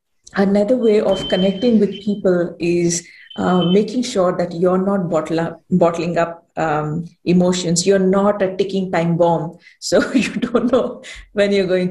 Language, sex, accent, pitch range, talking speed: English, female, Indian, 175-220 Hz, 160 wpm